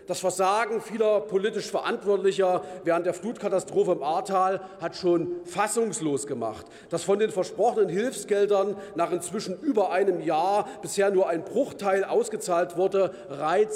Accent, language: German, German